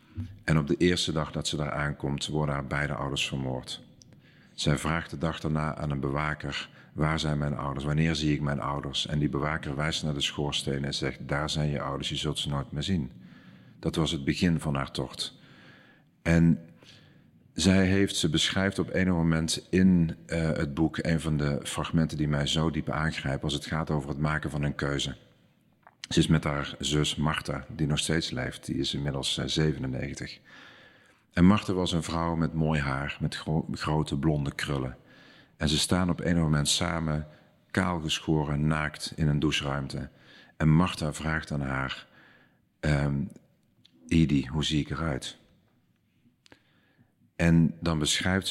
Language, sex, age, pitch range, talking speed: Dutch, male, 50-69, 70-80 Hz, 170 wpm